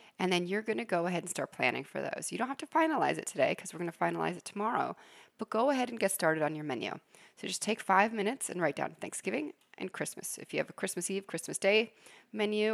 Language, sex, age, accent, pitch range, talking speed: English, female, 30-49, American, 170-225 Hz, 260 wpm